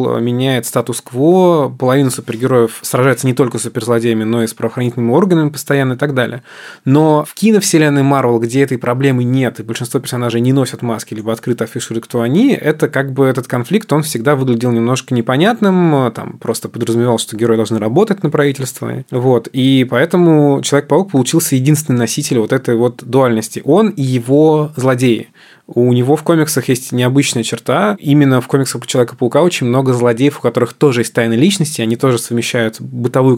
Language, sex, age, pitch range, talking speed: Russian, male, 20-39, 115-140 Hz, 175 wpm